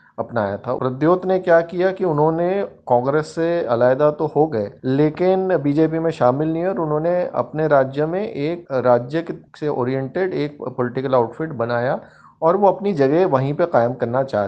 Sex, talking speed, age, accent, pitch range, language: male, 180 wpm, 30-49, native, 130-165 Hz, Hindi